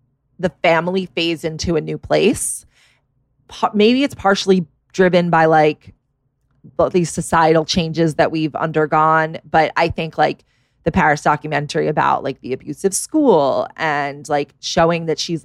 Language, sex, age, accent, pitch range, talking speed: English, female, 20-39, American, 150-180 Hz, 140 wpm